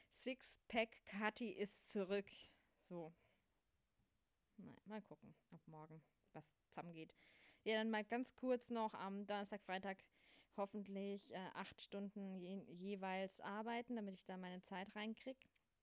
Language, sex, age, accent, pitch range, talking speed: German, female, 20-39, German, 195-235 Hz, 120 wpm